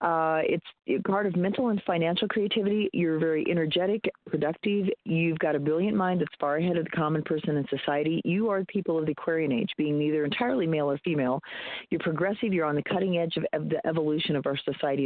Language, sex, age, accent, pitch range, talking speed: English, female, 40-59, American, 150-185 Hz, 240 wpm